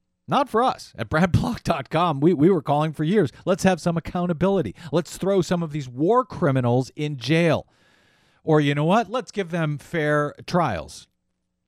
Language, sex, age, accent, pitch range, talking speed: English, male, 50-69, American, 105-155 Hz, 170 wpm